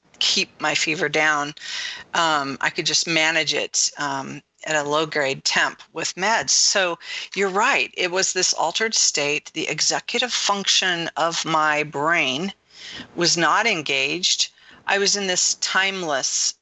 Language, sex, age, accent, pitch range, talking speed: English, female, 40-59, American, 145-185 Hz, 145 wpm